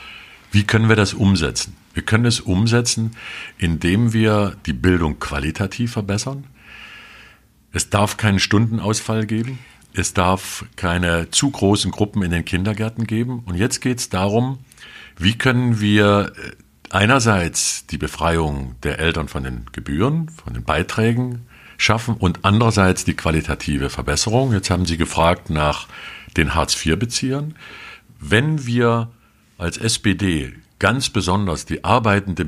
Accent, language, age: German, German, 50-69